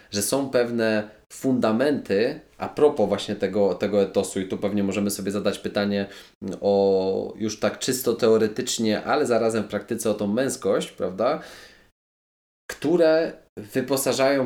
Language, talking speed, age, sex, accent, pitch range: Polish, 135 wpm, 20-39, male, native, 95-110 Hz